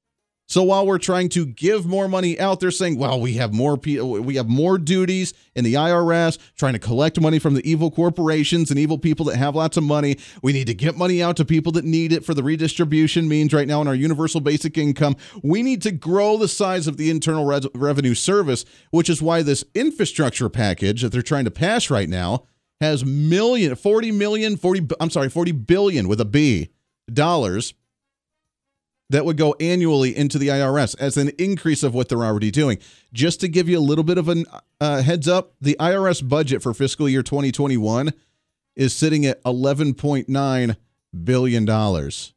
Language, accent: English, American